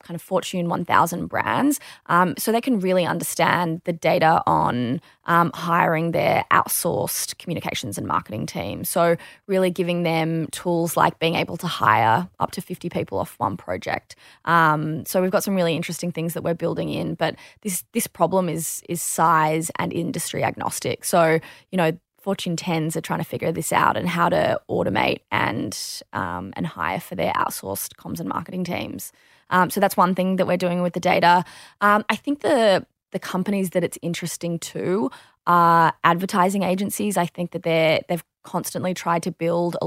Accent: Australian